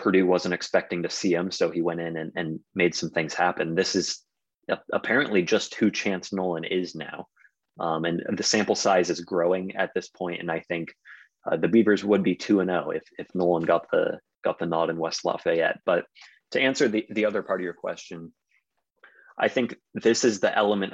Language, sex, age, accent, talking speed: English, male, 30-49, American, 205 wpm